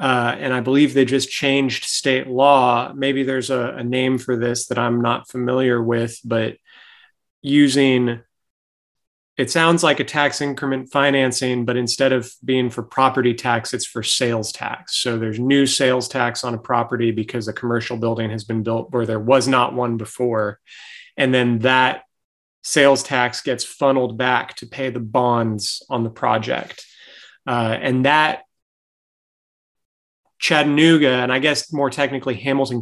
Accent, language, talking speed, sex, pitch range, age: American, English, 160 wpm, male, 120-135 Hz, 30-49